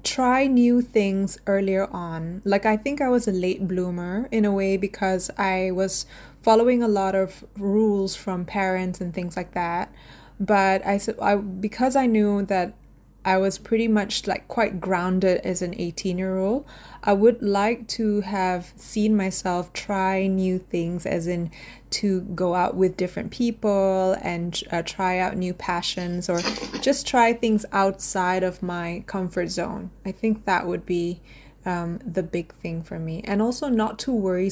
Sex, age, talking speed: female, 20-39, 170 wpm